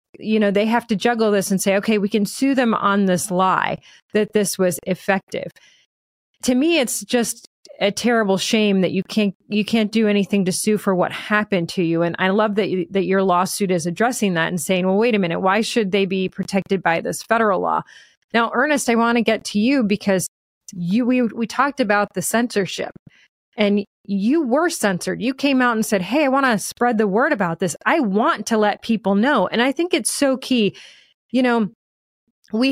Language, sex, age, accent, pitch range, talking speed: English, female, 30-49, American, 190-235 Hz, 215 wpm